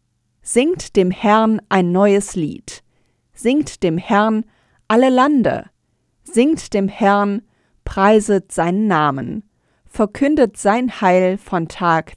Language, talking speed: German, 110 wpm